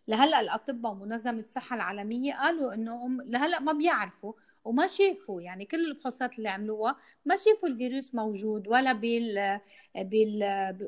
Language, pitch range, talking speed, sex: Arabic, 205-245 Hz, 150 wpm, female